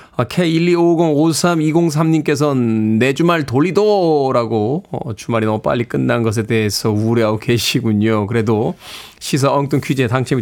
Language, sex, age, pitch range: Korean, male, 20-39, 135-180 Hz